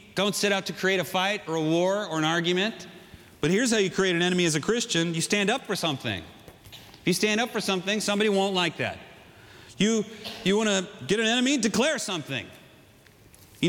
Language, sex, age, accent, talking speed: Dutch, male, 40-59, American, 205 wpm